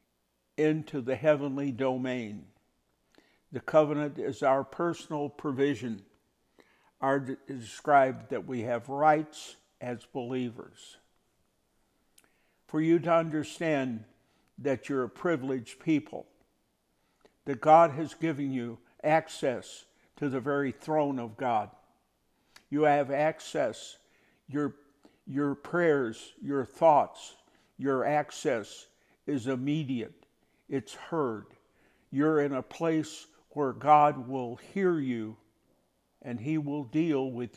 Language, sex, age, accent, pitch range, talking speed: English, male, 60-79, American, 125-150 Hz, 105 wpm